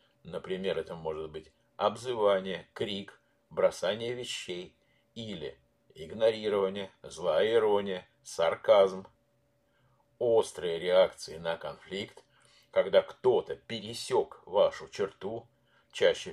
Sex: male